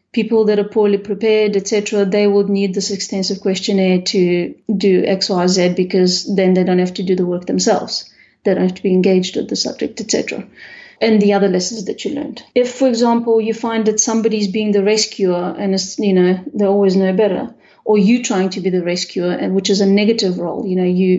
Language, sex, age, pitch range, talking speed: English, female, 30-49, 195-220 Hz, 225 wpm